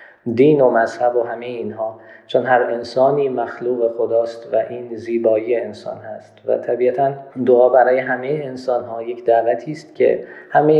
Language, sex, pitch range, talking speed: Persian, male, 115-140 Hz, 150 wpm